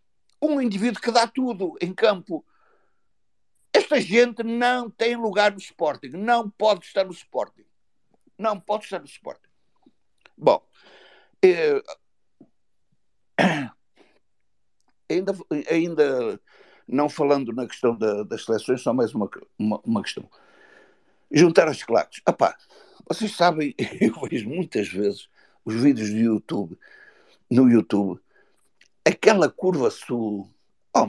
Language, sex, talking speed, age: Portuguese, male, 120 wpm, 60-79